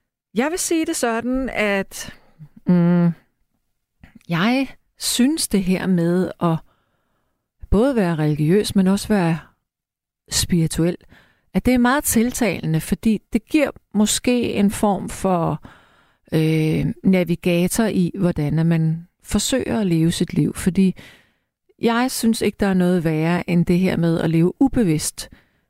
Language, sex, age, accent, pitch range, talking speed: Danish, female, 40-59, native, 170-215 Hz, 130 wpm